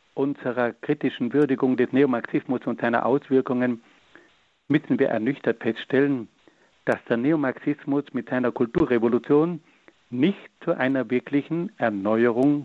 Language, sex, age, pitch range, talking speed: German, male, 60-79, 130-170 Hz, 110 wpm